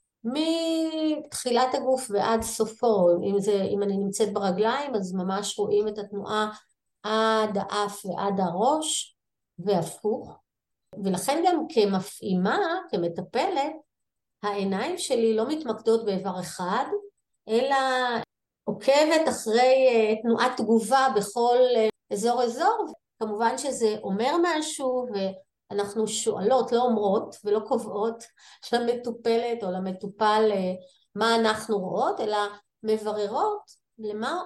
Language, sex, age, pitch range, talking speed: Hebrew, female, 30-49, 205-255 Hz, 100 wpm